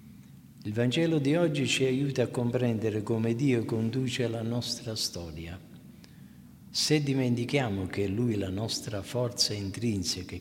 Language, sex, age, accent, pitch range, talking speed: Italian, male, 50-69, native, 100-130 Hz, 140 wpm